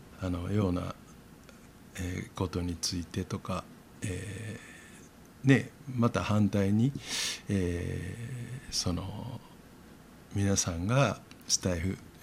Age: 60-79